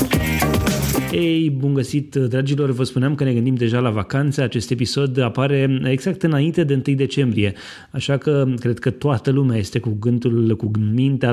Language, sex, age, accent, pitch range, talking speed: Romanian, male, 30-49, native, 115-145 Hz, 165 wpm